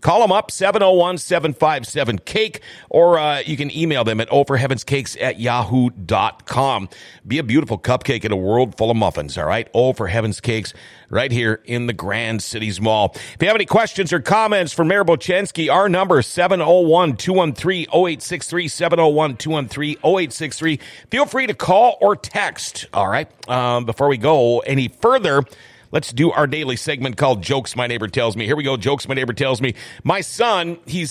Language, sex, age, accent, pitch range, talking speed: English, male, 50-69, American, 125-175 Hz, 175 wpm